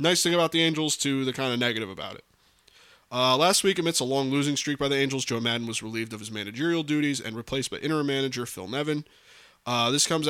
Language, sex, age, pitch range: English, male, 20-39, 110-135 Hz